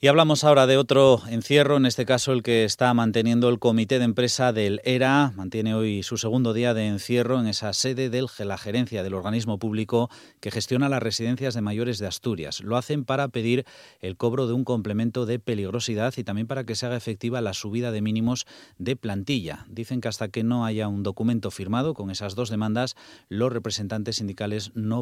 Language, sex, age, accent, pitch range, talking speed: Spanish, male, 30-49, Spanish, 100-125 Hz, 200 wpm